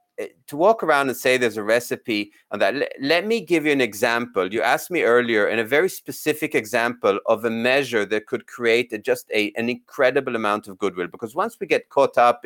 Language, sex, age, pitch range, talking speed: English, male, 30-49, 110-135 Hz, 205 wpm